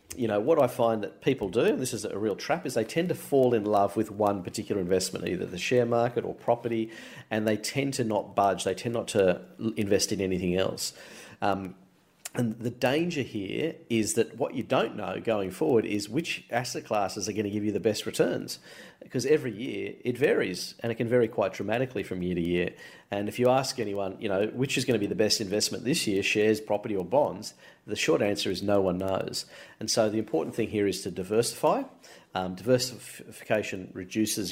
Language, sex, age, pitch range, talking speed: English, male, 40-59, 100-120 Hz, 210 wpm